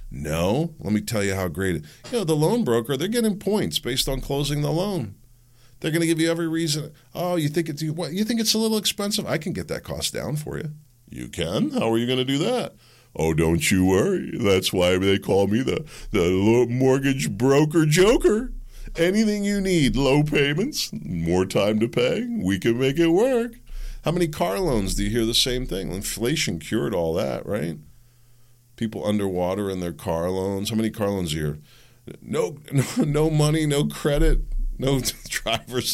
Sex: male